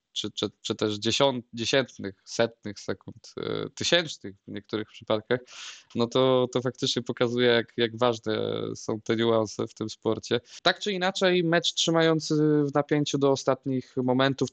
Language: Polish